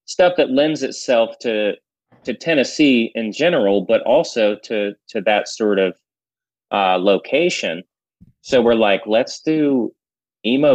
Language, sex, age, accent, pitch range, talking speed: English, male, 30-49, American, 100-120 Hz, 135 wpm